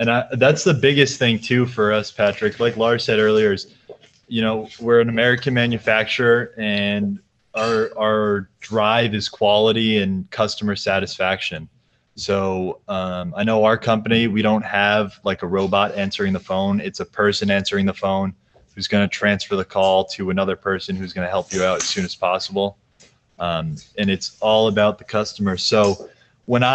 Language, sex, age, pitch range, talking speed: English, male, 20-39, 100-120 Hz, 175 wpm